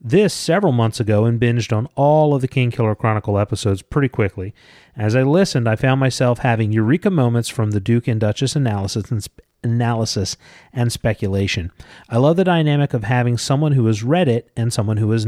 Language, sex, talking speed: English, male, 200 wpm